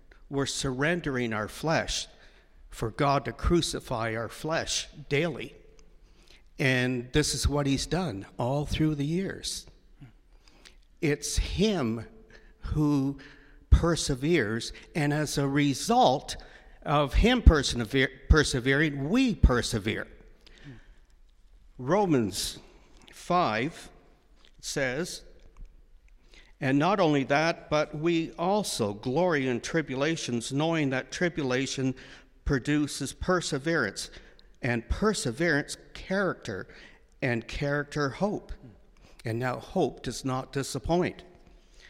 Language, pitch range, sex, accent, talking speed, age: English, 120-155 Hz, male, American, 90 wpm, 60-79